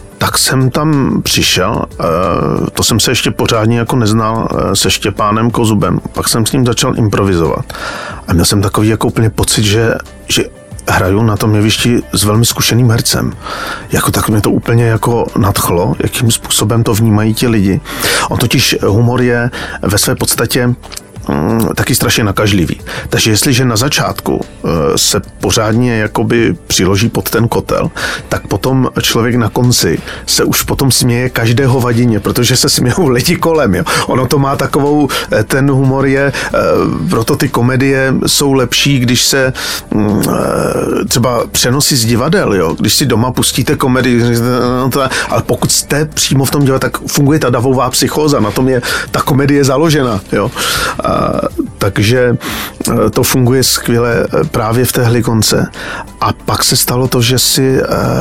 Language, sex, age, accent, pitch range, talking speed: Czech, male, 40-59, native, 115-135 Hz, 150 wpm